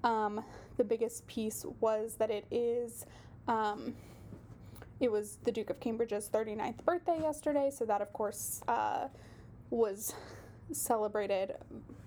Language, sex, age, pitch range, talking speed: English, female, 10-29, 220-275 Hz, 125 wpm